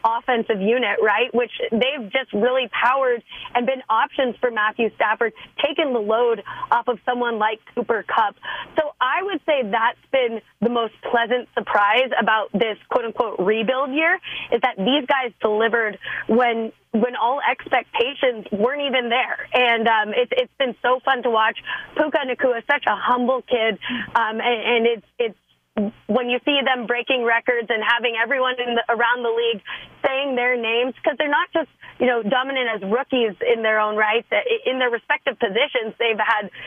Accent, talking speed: American, 175 wpm